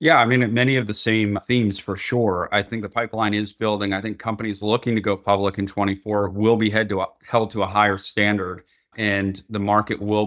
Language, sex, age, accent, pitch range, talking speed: English, male, 30-49, American, 100-110 Hz, 210 wpm